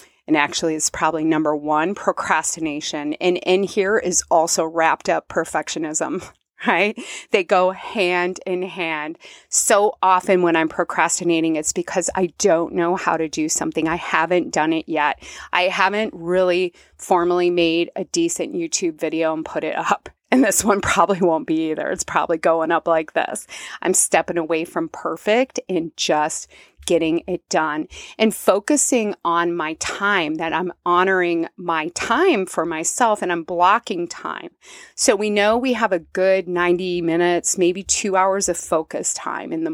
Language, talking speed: English, 165 wpm